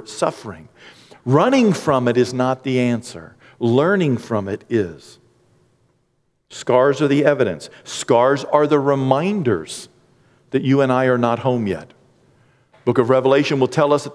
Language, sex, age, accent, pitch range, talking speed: English, male, 50-69, American, 125-175 Hz, 150 wpm